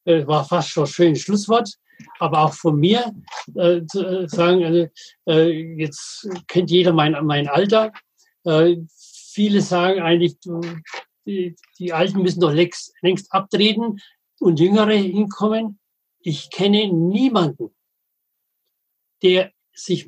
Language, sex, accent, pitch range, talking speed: German, male, German, 165-200 Hz, 125 wpm